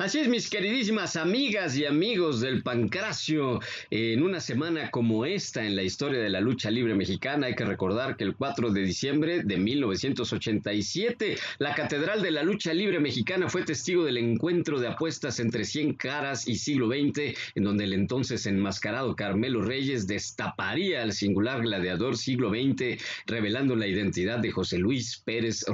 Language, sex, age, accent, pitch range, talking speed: Spanish, male, 50-69, Mexican, 105-145 Hz, 165 wpm